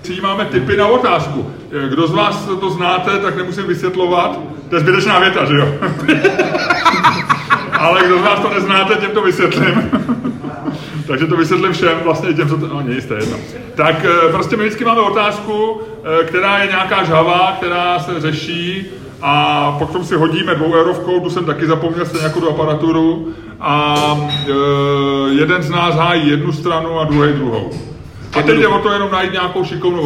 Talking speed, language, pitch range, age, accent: 165 wpm, Czech, 155-200 Hz, 30-49, native